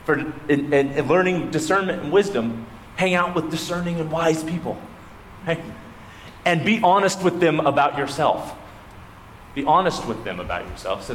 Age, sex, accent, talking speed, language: 30-49, male, American, 150 wpm, English